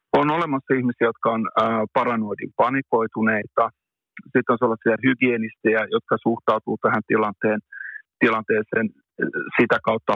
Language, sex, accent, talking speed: Finnish, male, native, 105 wpm